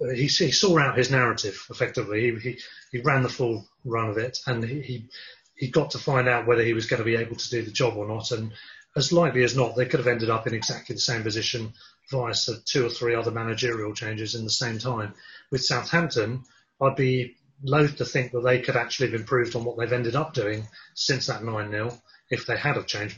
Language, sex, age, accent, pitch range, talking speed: English, male, 30-49, British, 120-140 Hz, 230 wpm